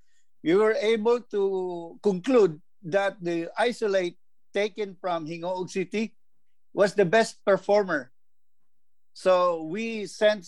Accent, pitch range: Filipino, 165-205 Hz